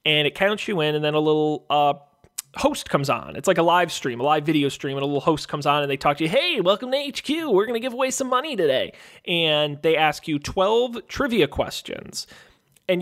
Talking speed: 245 wpm